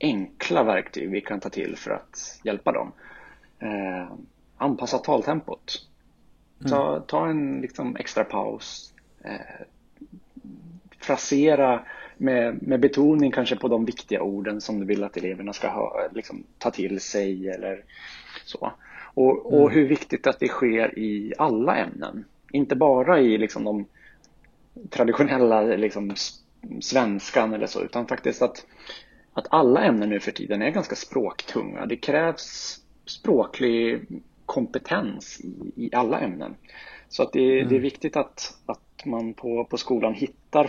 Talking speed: 140 wpm